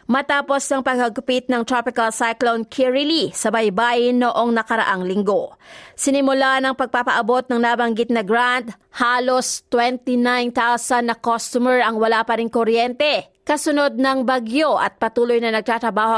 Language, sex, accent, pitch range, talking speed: Filipino, female, native, 230-265 Hz, 130 wpm